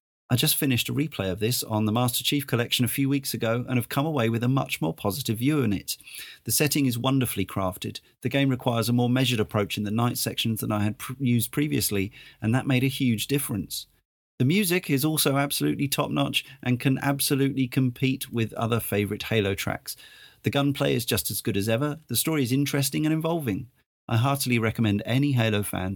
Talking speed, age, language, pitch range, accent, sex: 210 wpm, 40-59, English, 110-140 Hz, British, male